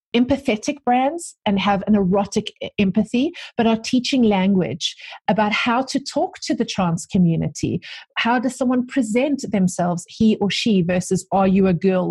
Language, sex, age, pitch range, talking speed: English, female, 40-59, 180-230 Hz, 160 wpm